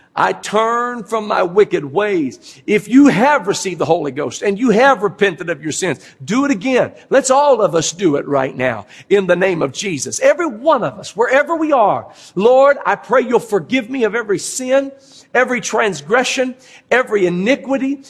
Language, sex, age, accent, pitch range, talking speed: English, male, 50-69, American, 180-250 Hz, 185 wpm